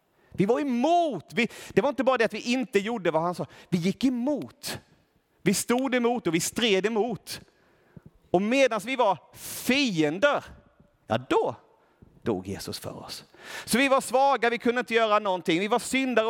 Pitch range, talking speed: 160-235 Hz, 175 wpm